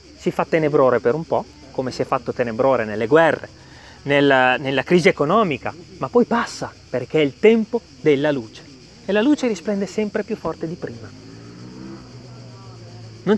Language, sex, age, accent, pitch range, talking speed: Italian, male, 30-49, native, 130-200 Hz, 160 wpm